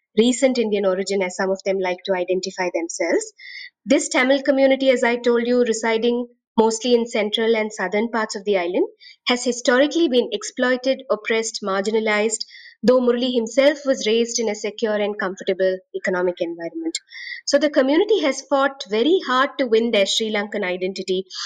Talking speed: 165 wpm